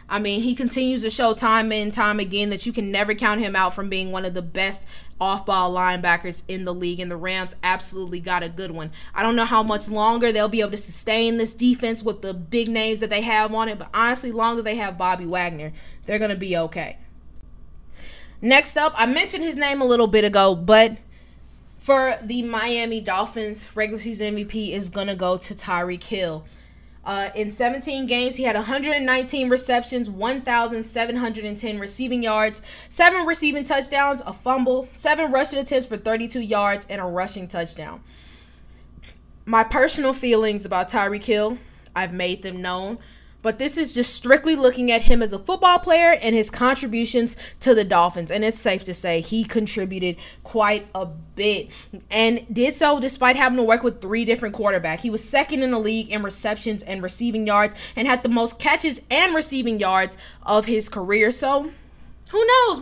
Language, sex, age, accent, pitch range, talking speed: English, female, 20-39, American, 190-245 Hz, 190 wpm